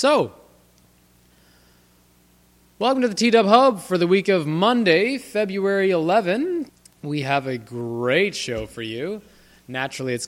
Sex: male